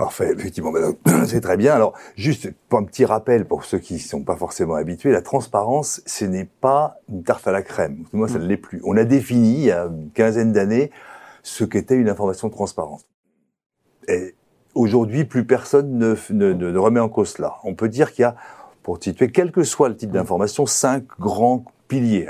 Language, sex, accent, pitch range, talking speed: French, male, French, 100-140 Hz, 215 wpm